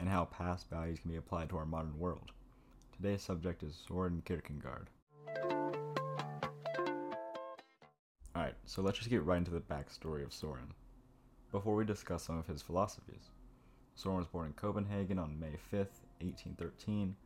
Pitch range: 80-95 Hz